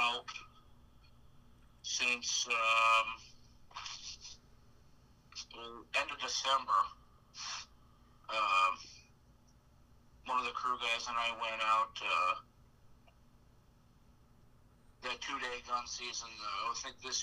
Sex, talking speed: male, 85 wpm